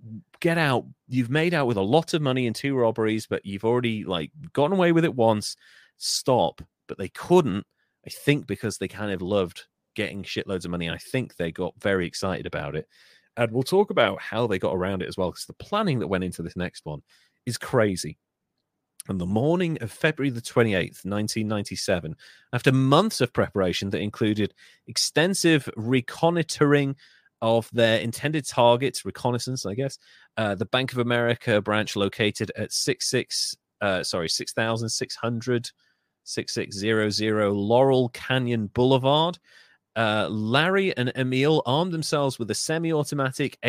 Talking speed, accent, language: 165 wpm, British, English